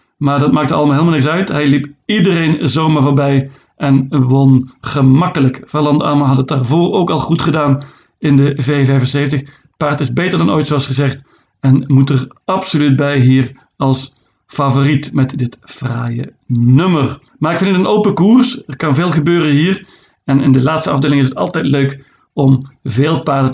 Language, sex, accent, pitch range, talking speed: Dutch, male, Dutch, 135-160 Hz, 180 wpm